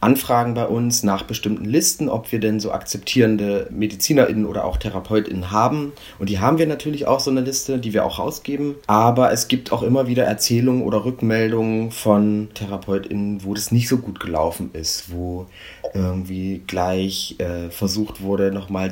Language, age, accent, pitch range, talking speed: German, 30-49, German, 95-115 Hz, 170 wpm